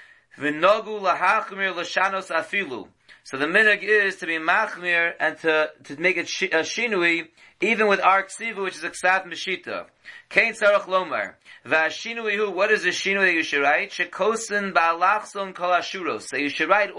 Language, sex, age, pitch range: English, male, 30-49, 170-205 Hz